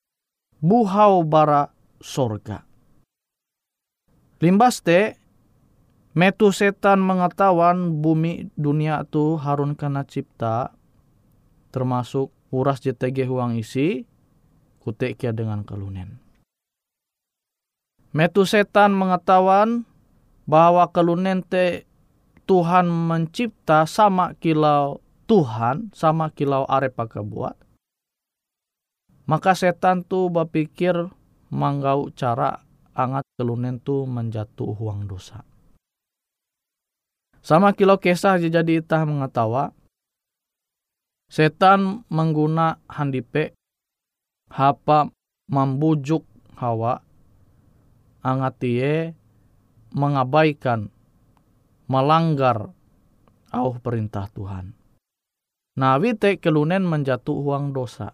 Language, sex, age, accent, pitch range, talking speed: Indonesian, male, 20-39, native, 120-170 Hz, 75 wpm